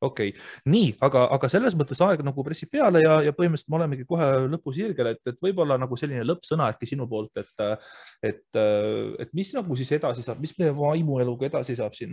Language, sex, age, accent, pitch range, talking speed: English, male, 30-49, Finnish, 110-145 Hz, 205 wpm